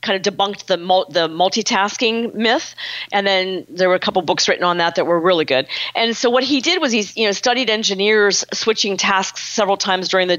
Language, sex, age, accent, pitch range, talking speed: English, female, 40-59, American, 170-205 Hz, 225 wpm